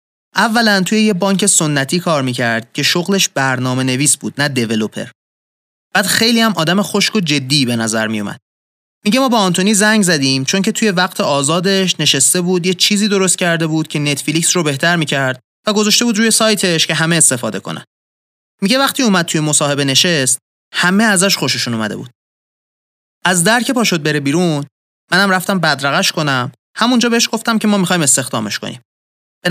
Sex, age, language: male, 30-49, Persian